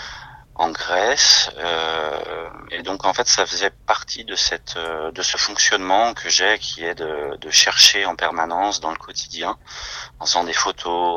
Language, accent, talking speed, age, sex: French, French, 160 wpm, 30-49, male